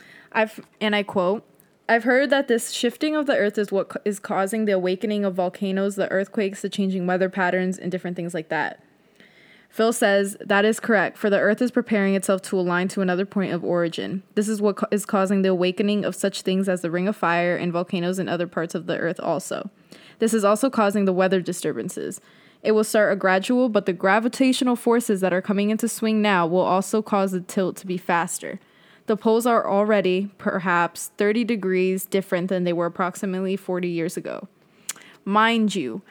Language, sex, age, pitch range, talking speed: English, female, 20-39, 185-215 Hz, 205 wpm